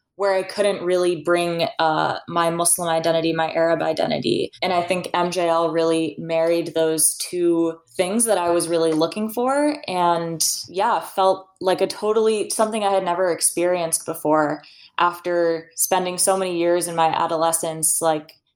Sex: female